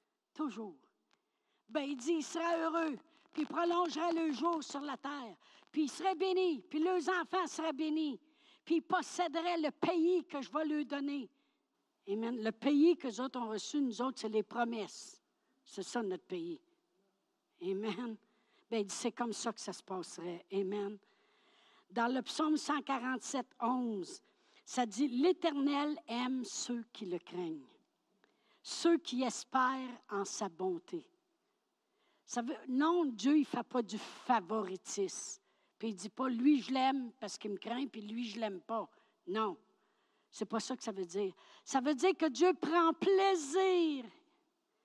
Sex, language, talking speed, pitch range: female, French, 160 wpm, 230-335 Hz